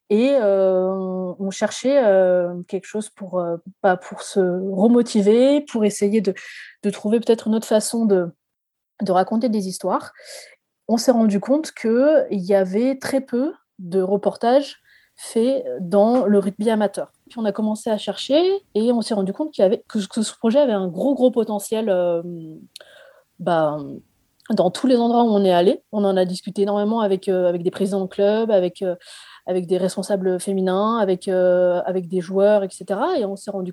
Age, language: 20-39, French